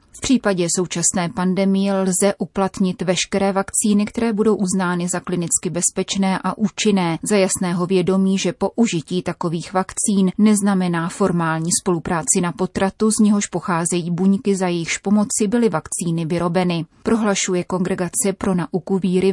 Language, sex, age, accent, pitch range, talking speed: Czech, female, 30-49, native, 180-200 Hz, 135 wpm